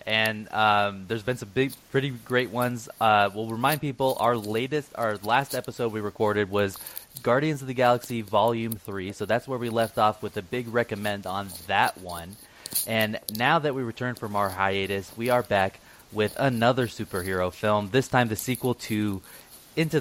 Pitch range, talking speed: 105-125 Hz, 185 wpm